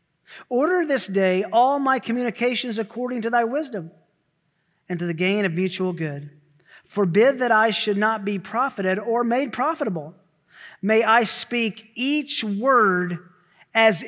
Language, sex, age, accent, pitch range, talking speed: English, male, 40-59, American, 165-215 Hz, 140 wpm